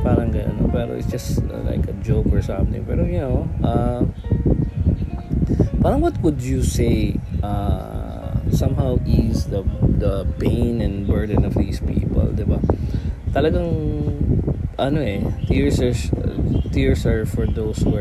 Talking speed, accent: 145 wpm, native